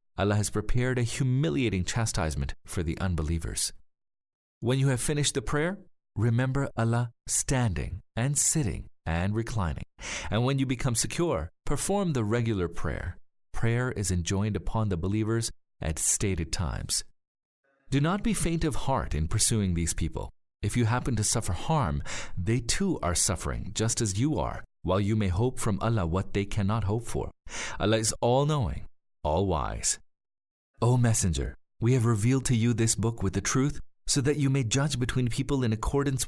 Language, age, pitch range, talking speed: English, 40-59, 95-130 Hz, 165 wpm